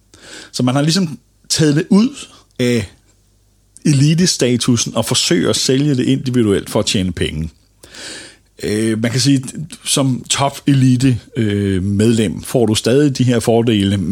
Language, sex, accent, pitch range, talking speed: Danish, male, native, 100-130 Hz, 135 wpm